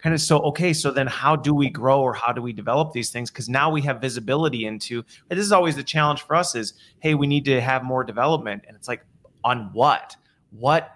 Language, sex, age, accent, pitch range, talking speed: English, male, 30-49, American, 110-140 Hz, 245 wpm